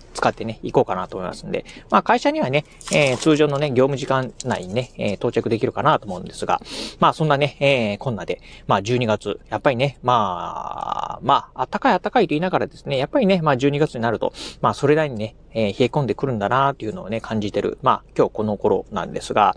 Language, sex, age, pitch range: Japanese, male, 40-59, 125-185 Hz